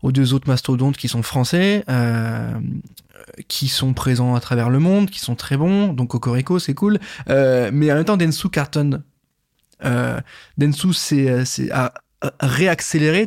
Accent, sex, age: French, male, 20-39